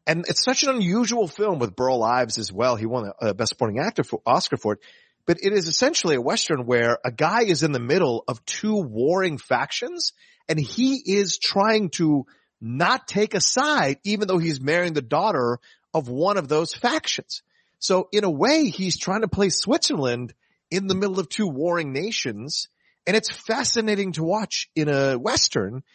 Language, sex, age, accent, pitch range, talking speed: English, male, 40-59, American, 125-190 Hz, 190 wpm